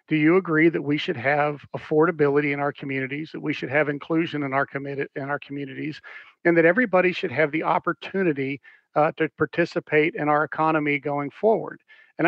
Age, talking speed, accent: 50-69, 185 wpm, American